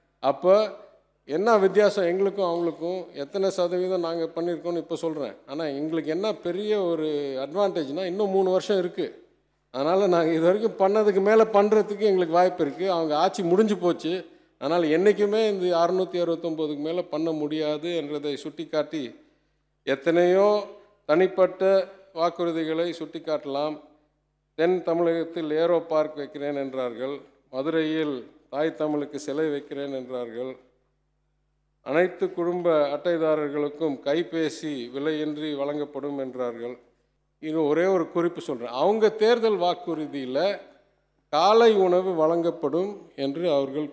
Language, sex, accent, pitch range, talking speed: English, male, Indian, 150-190 Hz, 115 wpm